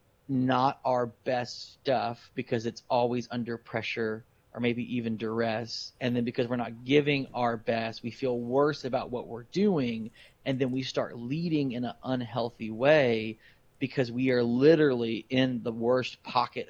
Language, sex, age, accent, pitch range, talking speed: English, male, 30-49, American, 120-140 Hz, 160 wpm